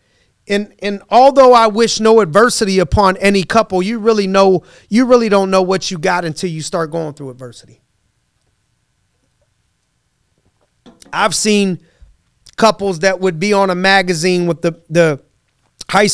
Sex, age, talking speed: male, 30-49, 145 wpm